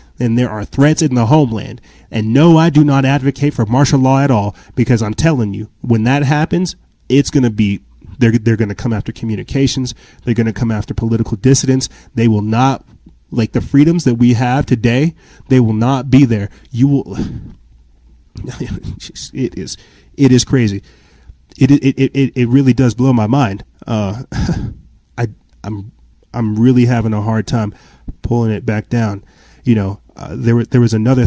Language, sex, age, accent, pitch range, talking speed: English, male, 30-49, American, 110-130 Hz, 180 wpm